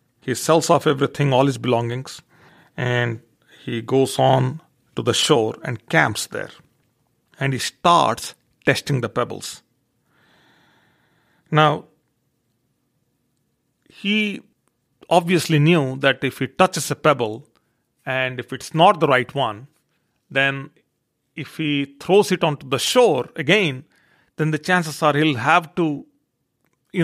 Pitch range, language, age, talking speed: 125-160 Hz, English, 40-59, 125 wpm